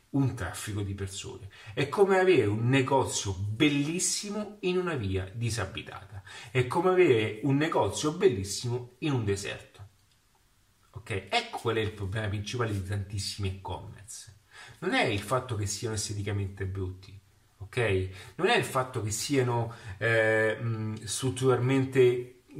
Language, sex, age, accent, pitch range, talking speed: Italian, male, 30-49, native, 100-130 Hz, 125 wpm